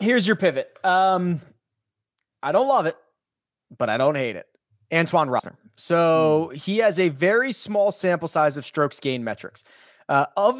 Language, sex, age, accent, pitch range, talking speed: English, male, 30-49, American, 140-185 Hz, 165 wpm